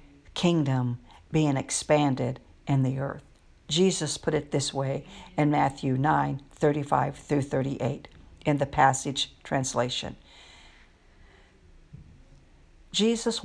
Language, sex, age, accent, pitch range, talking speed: English, female, 60-79, American, 135-200 Hz, 90 wpm